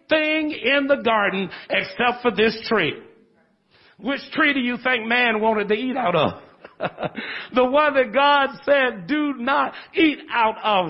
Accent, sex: American, male